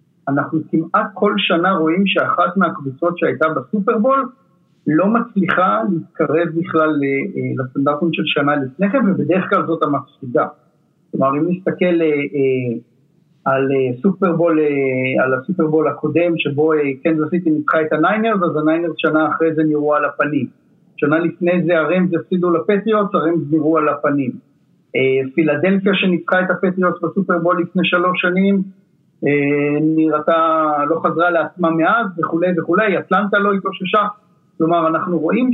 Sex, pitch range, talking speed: male, 150-185 Hz, 100 wpm